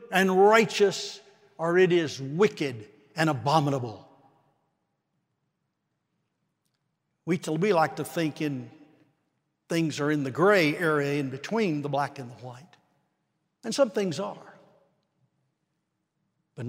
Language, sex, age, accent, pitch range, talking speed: English, male, 60-79, American, 140-160 Hz, 115 wpm